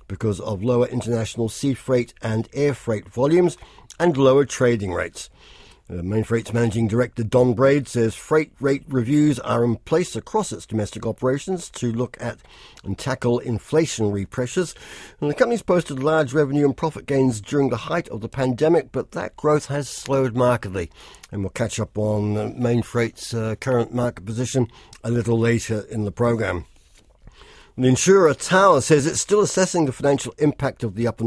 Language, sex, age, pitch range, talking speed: English, male, 60-79, 115-145 Hz, 170 wpm